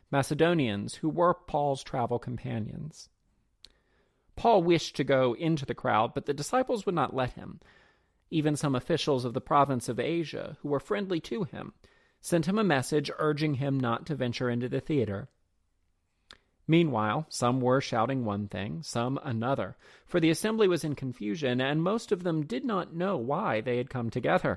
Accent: American